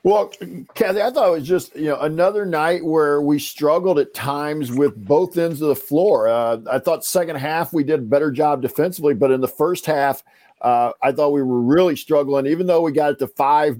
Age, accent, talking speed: 50-69, American, 225 wpm